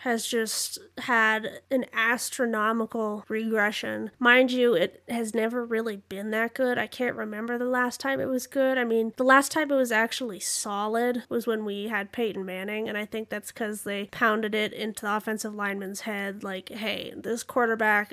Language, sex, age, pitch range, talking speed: English, female, 20-39, 215-255 Hz, 185 wpm